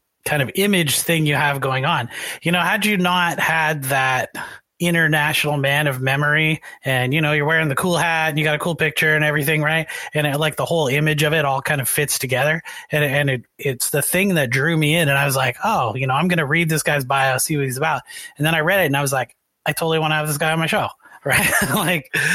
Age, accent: 30-49, American